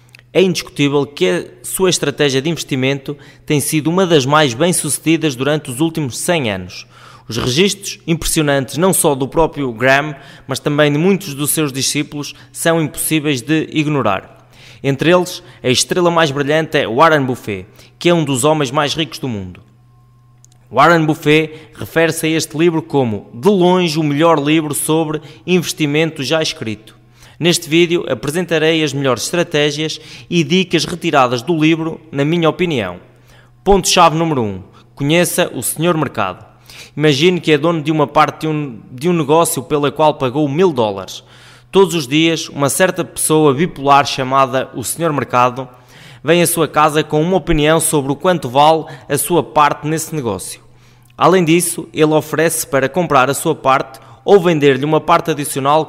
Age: 20-39